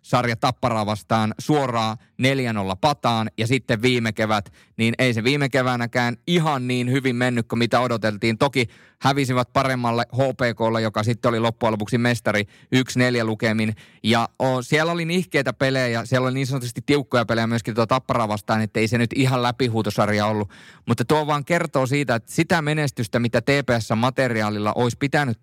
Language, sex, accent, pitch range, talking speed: Finnish, male, native, 115-135 Hz, 155 wpm